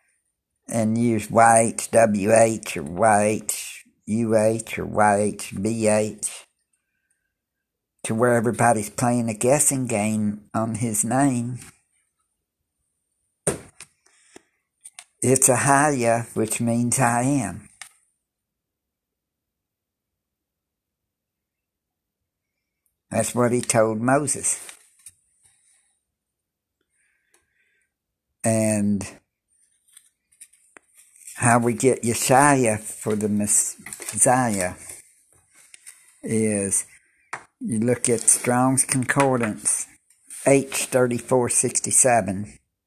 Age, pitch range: 60-79, 100-120 Hz